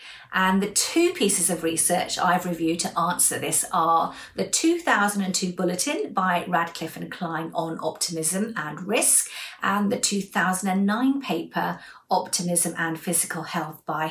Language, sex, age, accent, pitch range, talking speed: English, female, 50-69, British, 175-250 Hz, 135 wpm